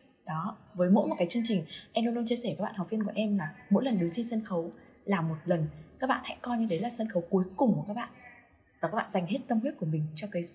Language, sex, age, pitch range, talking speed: Vietnamese, female, 20-39, 170-230 Hz, 305 wpm